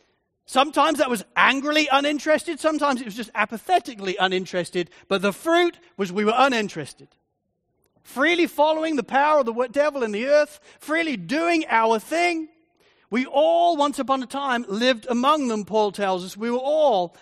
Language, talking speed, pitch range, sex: English, 165 wpm, 235-320 Hz, male